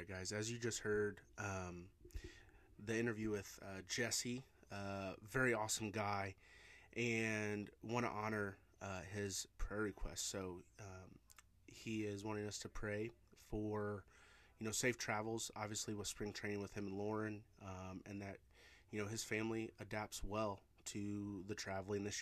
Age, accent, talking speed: 30-49, American, 155 wpm